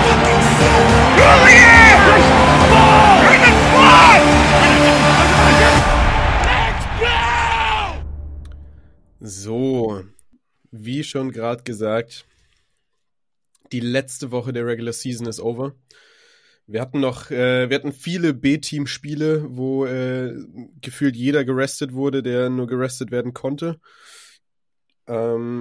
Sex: male